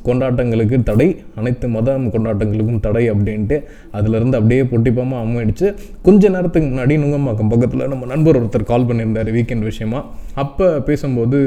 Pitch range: 110-135 Hz